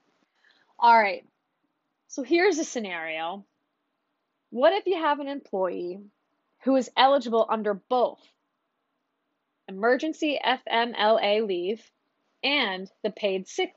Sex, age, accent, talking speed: female, 20-39, American, 105 wpm